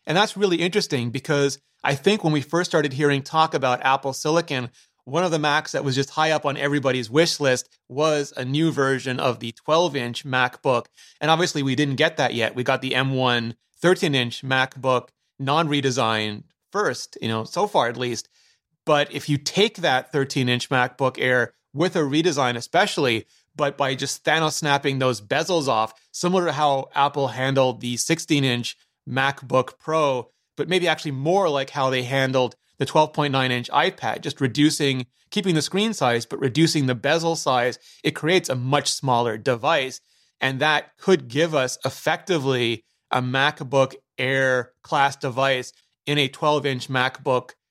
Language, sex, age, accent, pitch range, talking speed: English, male, 30-49, American, 130-155 Hz, 165 wpm